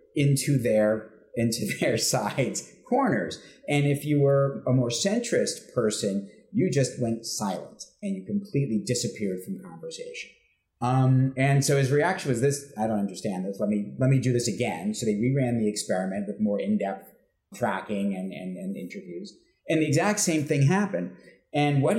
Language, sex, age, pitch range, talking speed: English, male, 30-49, 110-140 Hz, 175 wpm